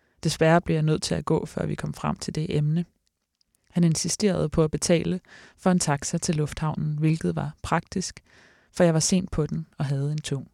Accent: native